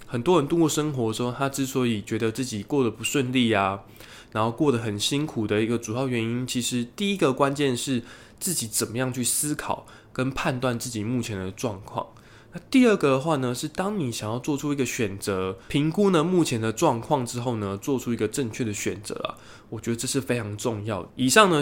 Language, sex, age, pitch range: Chinese, male, 20-39, 110-140 Hz